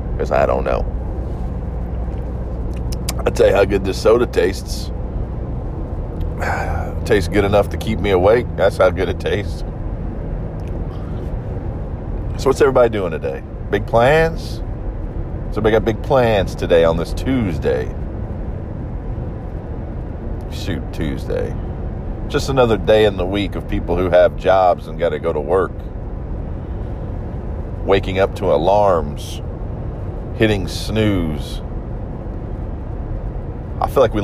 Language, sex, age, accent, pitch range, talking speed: English, male, 40-59, American, 80-105 Hz, 120 wpm